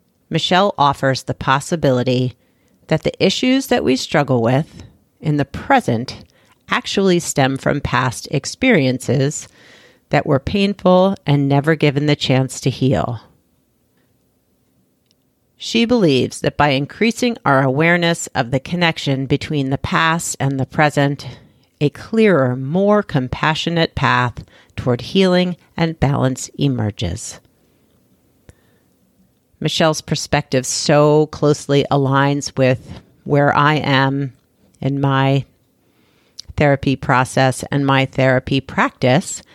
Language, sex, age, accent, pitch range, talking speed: English, female, 40-59, American, 130-165 Hz, 110 wpm